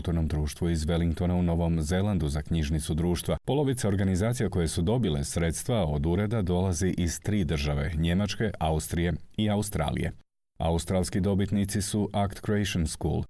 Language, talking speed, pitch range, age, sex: Croatian, 135 wpm, 85-100 Hz, 40-59, male